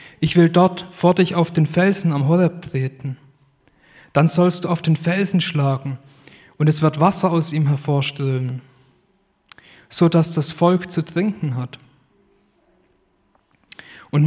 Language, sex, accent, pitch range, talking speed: German, male, German, 140-180 Hz, 135 wpm